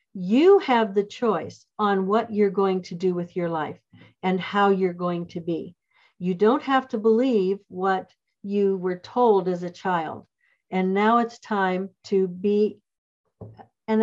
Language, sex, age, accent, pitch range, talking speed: English, female, 50-69, American, 185-240 Hz, 165 wpm